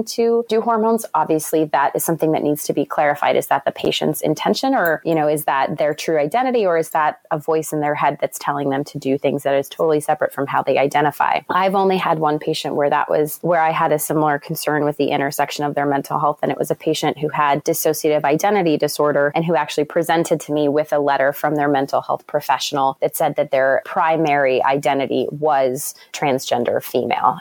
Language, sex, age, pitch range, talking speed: English, female, 20-39, 140-160 Hz, 220 wpm